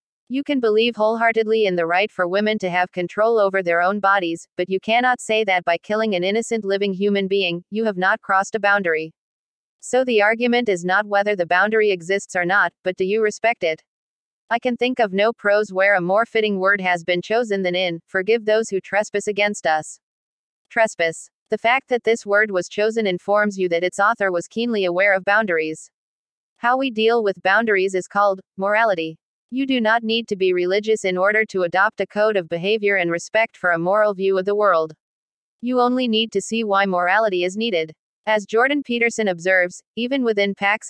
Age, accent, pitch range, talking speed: 40-59, American, 185-220 Hz, 200 wpm